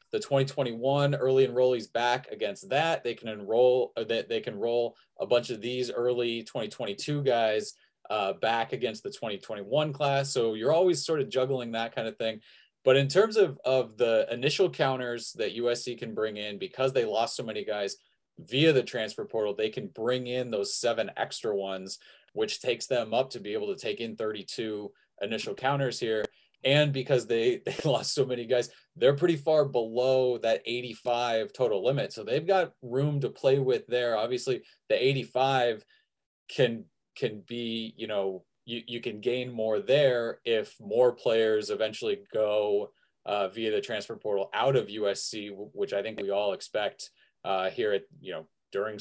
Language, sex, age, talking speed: English, male, 30-49, 180 wpm